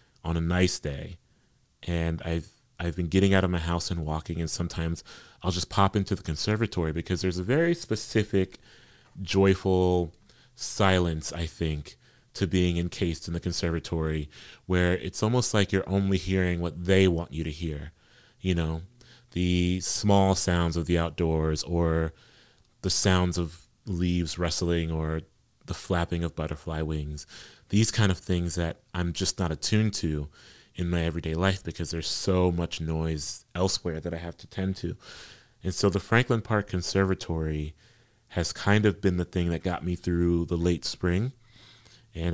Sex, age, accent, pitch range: male, 30-49, American, 85-95 Hz